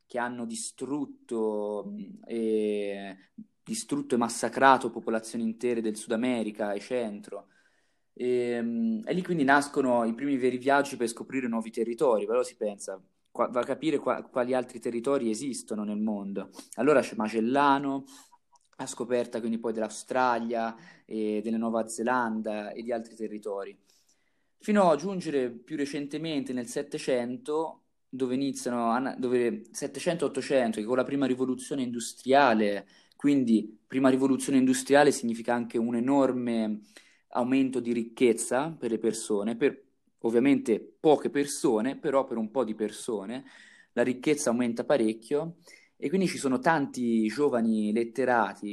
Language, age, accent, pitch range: Italian, 20-39, native, 115-140 Hz